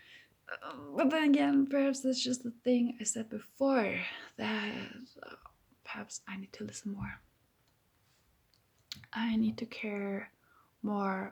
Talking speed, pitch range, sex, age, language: 125 wpm, 200-260 Hz, female, 20-39, English